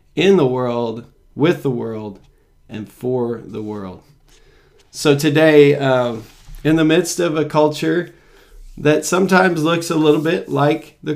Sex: male